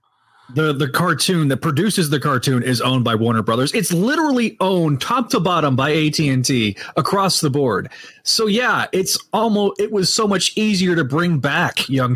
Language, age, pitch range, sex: English, 30-49, 135-190 Hz, male